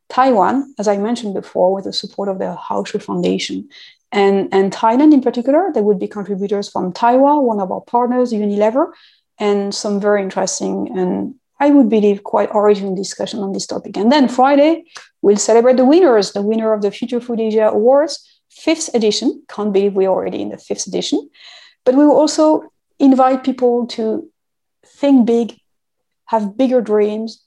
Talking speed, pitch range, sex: 175 wpm, 205-255 Hz, female